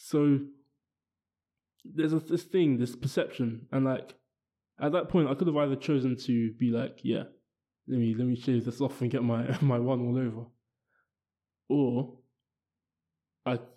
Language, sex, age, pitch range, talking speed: English, male, 20-39, 115-130 Hz, 160 wpm